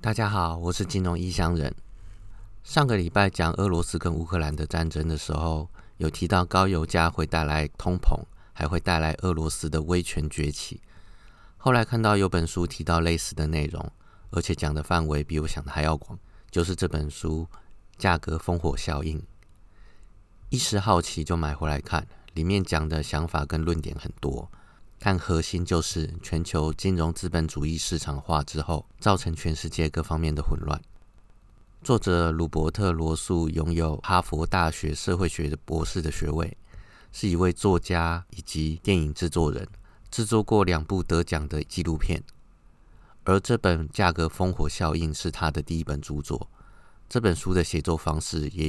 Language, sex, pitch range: Chinese, male, 80-95 Hz